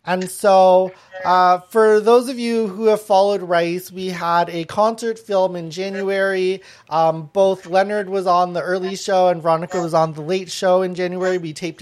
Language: English